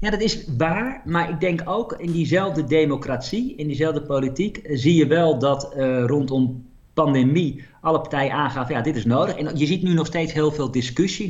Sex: male